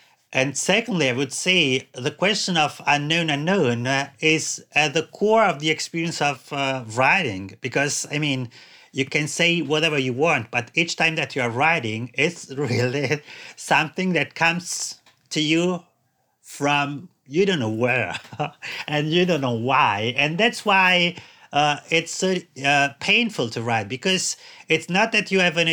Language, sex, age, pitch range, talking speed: English, male, 30-49, 135-175 Hz, 165 wpm